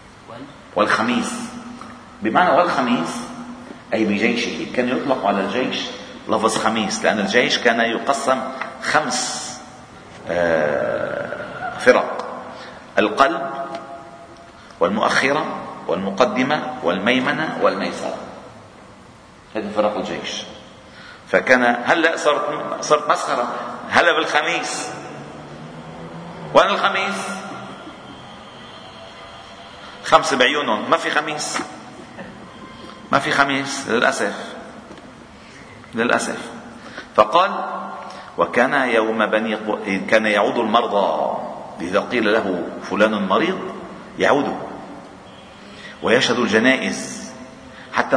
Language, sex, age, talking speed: Arabic, male, 40-59, 75 wpm